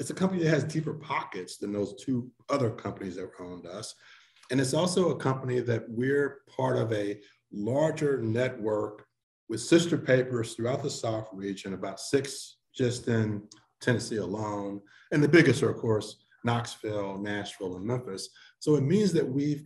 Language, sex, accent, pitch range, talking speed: English, male, American, 105-145 Hz, 170 wpm